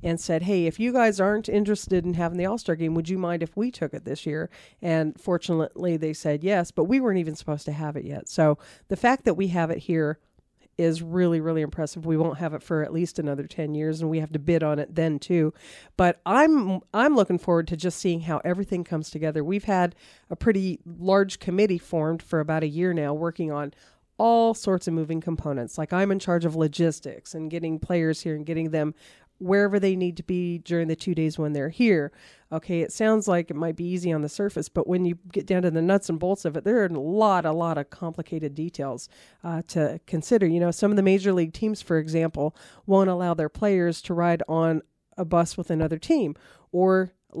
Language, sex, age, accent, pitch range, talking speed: English, female, 40-59, American, 160-190 Hz, 230 wpm